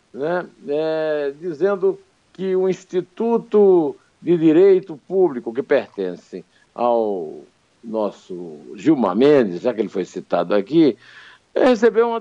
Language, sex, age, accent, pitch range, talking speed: Portuguese, male, 60-79, Brazilian, 120-200 Hz, 110 wpm